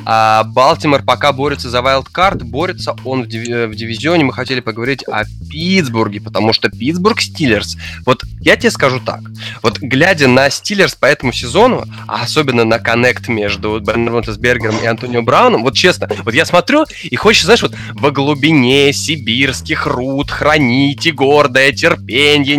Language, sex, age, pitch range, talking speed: Russian, male, 20-39, 115-170 Hz, 150 wpm